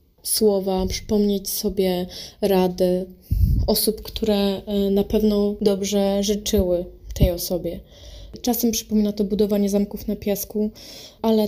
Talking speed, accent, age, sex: 105 wpm, native, 20-39, female